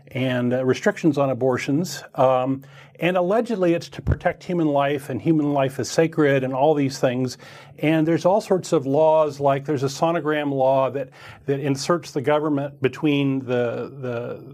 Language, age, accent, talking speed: English, 40-59, American, 170 wpm